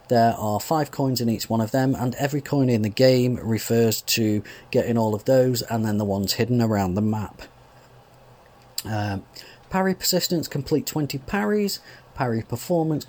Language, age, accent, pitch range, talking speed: English, 40-59, British, 115-145 Hz, 170 wpm